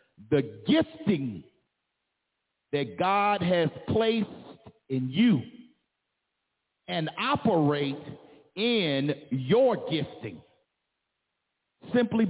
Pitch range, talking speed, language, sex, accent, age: 145-215 Hz, 70 wpm, English, male, American, 50-69